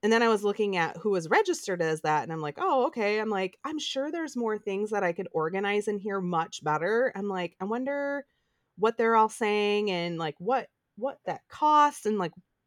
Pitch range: 170-215 Hz